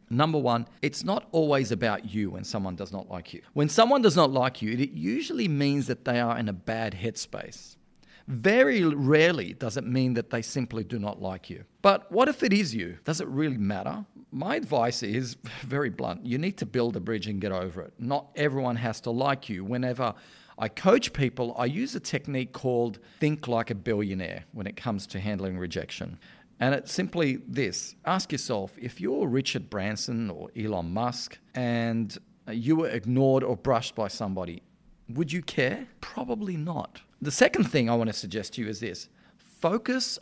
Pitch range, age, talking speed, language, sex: 110-150 Hz, 40-59, 190 wpm, English, male